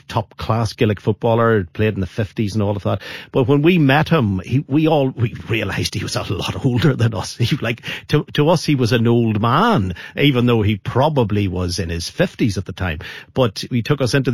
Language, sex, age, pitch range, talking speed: English, male, 50-69, 115-150 Hz, 230 wpm